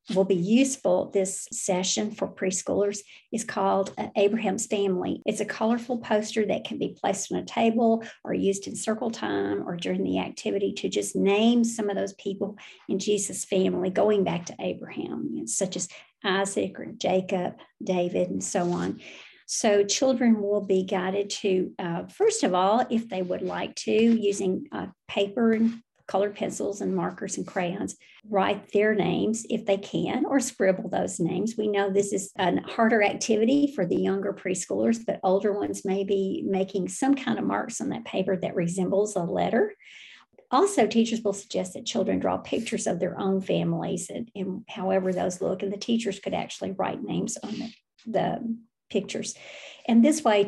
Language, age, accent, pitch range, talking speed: English, 50-69, American, 190-230 Hz, 175 wpm